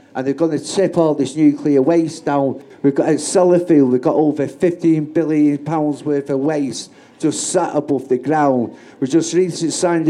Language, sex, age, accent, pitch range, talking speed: English, male, 50-69, British, 135-160 Hz, 185 wpm